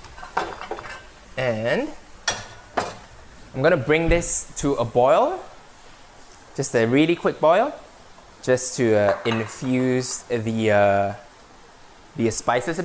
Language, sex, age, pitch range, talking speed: English, male, 20-39, 115-150 Hz, 105 wpm